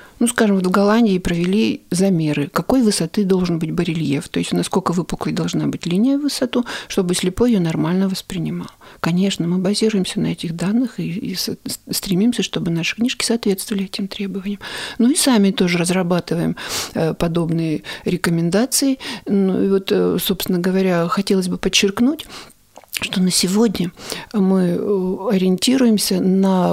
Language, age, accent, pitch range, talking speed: Russian, 50-69, native, 180-215 Hz, 135 wpm